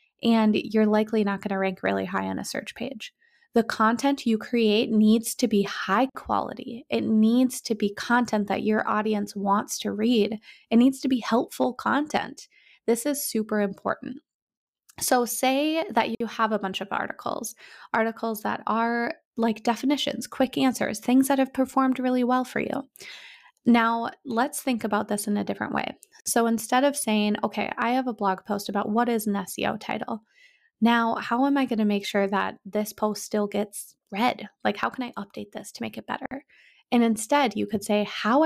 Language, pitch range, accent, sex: English, 210-260 Hz, American, female